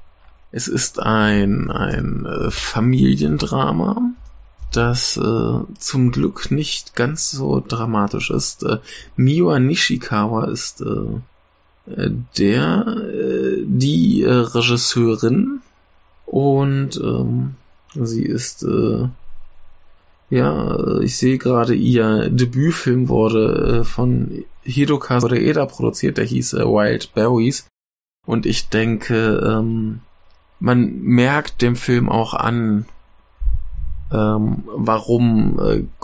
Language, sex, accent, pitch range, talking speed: German, male, German, 85-120 Hz, 100 wpm